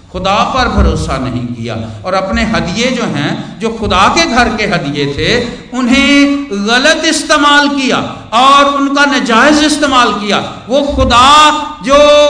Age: 50-69